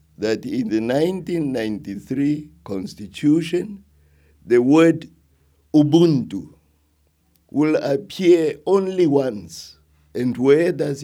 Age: 50-69